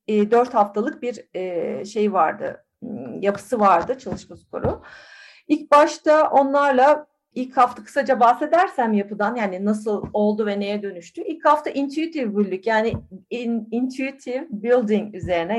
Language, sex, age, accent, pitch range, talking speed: Turkish, female, 40-59, native, 205-260 Hz, 115 wpm